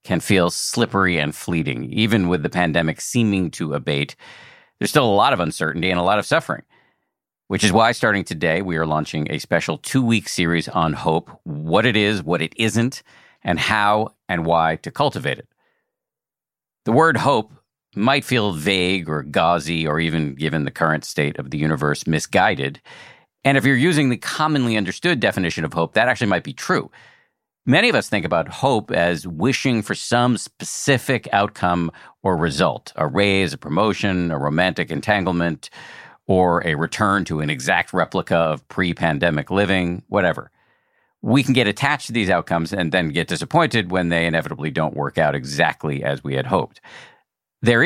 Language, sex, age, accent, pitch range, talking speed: English, male, 50-69, American, 80-110 Hz, 175 wpm